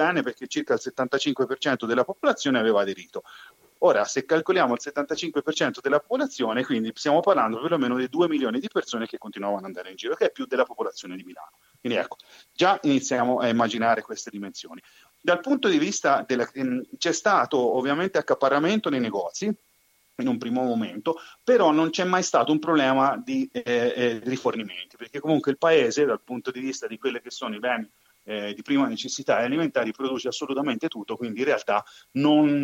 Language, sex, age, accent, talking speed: Italian, male, 30-49, native, 175 wpm